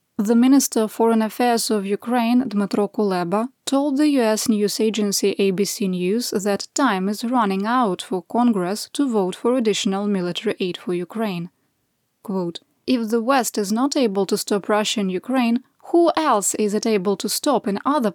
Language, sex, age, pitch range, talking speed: English, female, 20-39, 195-255 Hz, 170 wpm